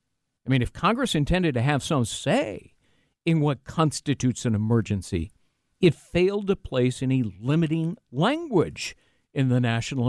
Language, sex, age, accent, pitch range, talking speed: English, male, 50-69, American, 120-165 Hz, 145 wpm